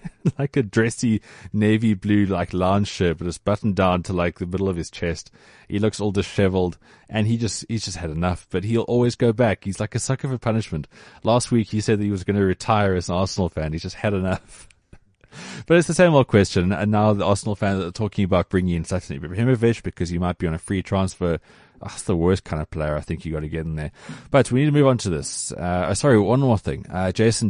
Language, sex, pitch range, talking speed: English, male, 90-120 Hz, 250 wpm